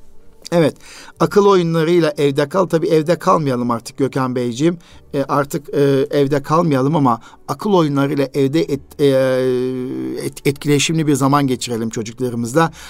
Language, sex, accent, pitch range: Turkish, male, native, 130-155 Hz